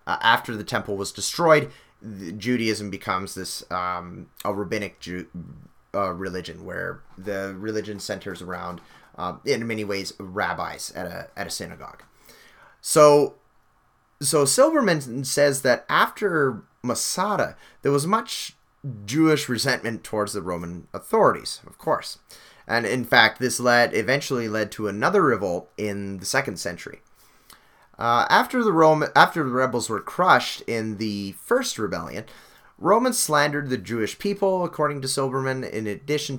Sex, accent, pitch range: male, American, 105-150 Hz